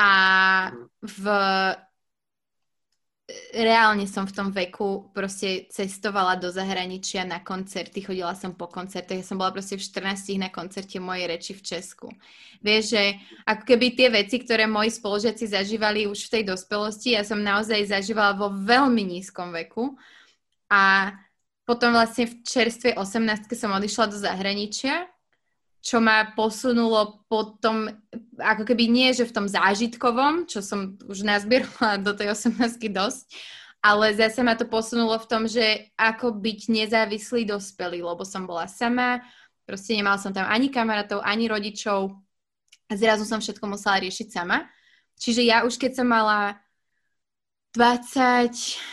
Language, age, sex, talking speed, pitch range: Slovak, 20-39, female, 145 wpm, 195-235 Hz